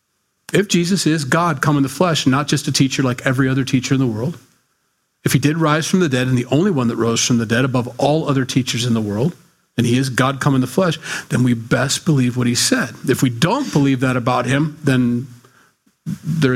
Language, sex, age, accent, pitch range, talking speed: English, male, 40-59, American, 125-160 Hz, 240 wpm